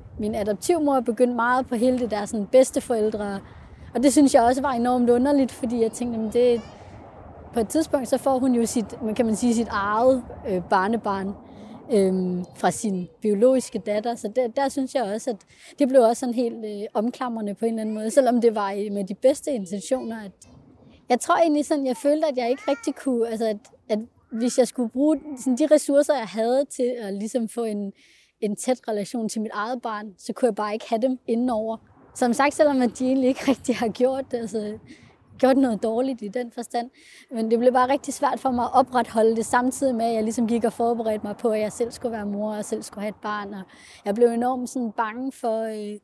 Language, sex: Danish, female